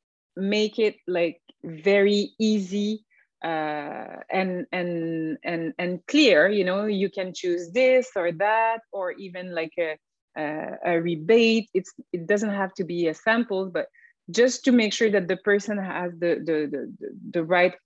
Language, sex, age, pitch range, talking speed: English, female, 30-49, 175-215 Hz, 160 wpm